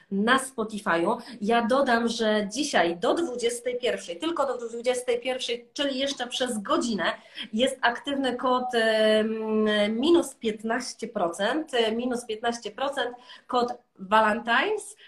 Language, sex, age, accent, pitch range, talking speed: Polish, female, 30-49, native, 205-265 Hz, 95 wpm